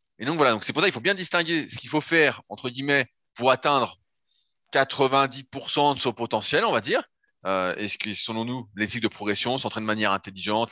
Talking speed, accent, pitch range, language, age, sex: 215 wpm, French, 110-160 Hz, French, 20-39, male